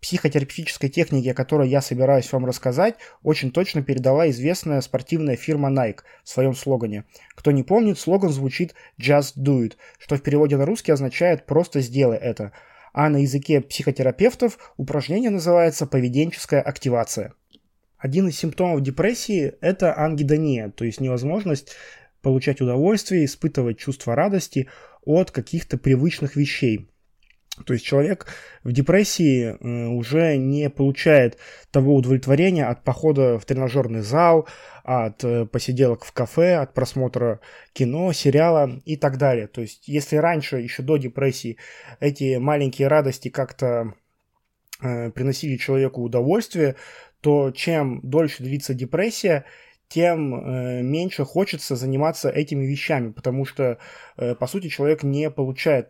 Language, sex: Russian, male